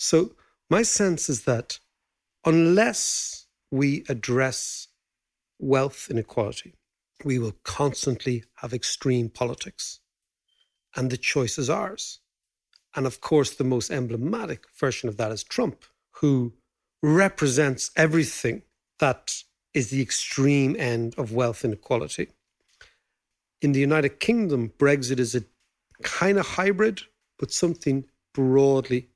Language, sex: English, male